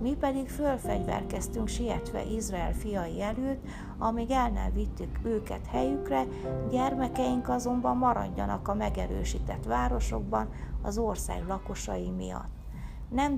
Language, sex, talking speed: Hungarian, female, 110 wpm